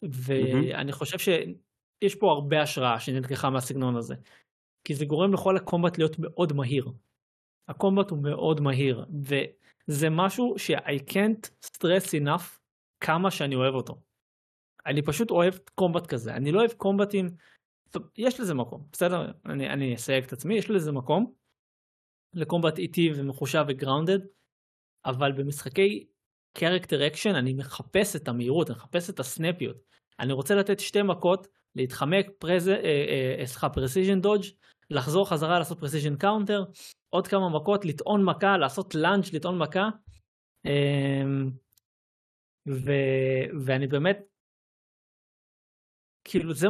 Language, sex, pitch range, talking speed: Hebrew, male, 135-185 Hz, 125 wpm